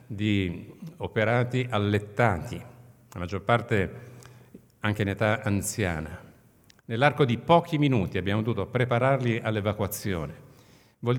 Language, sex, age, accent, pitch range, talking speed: Italian, male, 50-69, native, 100-130 Hz, 100 wpm